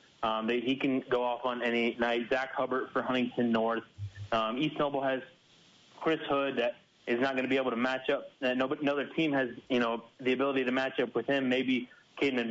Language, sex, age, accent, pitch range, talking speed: English, male, 30-49, American, 120-135 Hz, 225 wpm